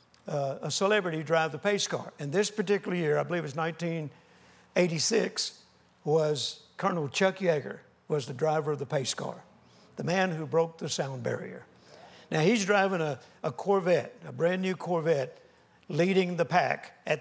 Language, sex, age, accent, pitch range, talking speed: English, male, 60-79, American, 155-180 Hz, 165 wpm